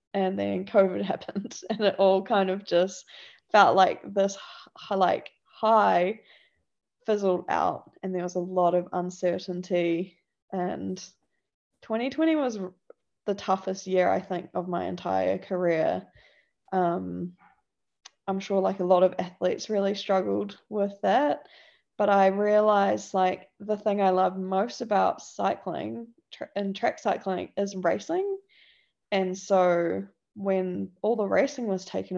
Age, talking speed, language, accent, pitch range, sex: 10-29, 140 wpm, English, Australian, 180-215 Hz, female